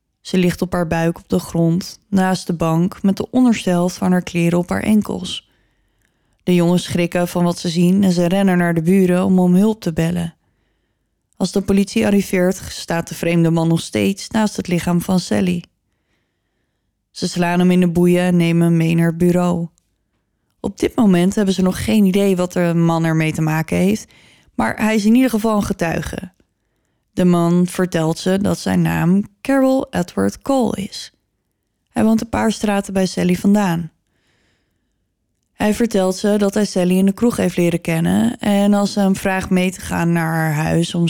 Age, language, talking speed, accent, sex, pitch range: 20-39, Dutch, 195 wpm, Dutch, female, 170-200 Hz